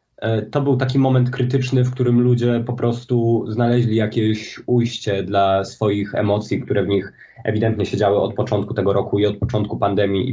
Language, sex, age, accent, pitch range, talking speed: Polish, male, 20-39, native, 110-130 Hz, 175 wpm